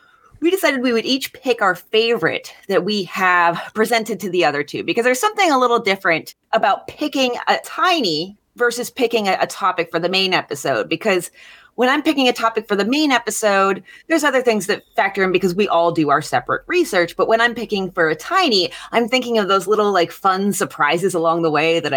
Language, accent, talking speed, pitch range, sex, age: English, American, 210 wpm, 165-240 Hz, female, 30-49